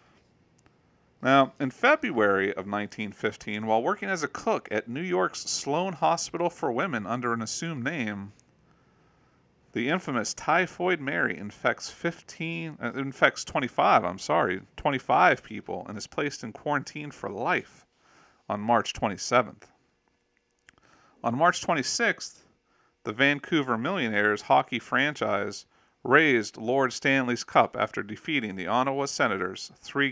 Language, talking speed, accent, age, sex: English, 125 wpm, American, 40-59, male